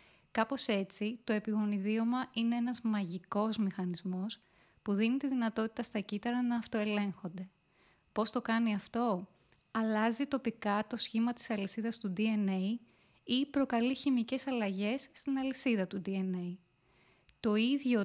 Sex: female